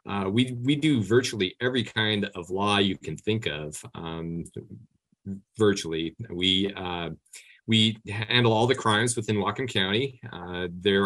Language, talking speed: English, 145 wpm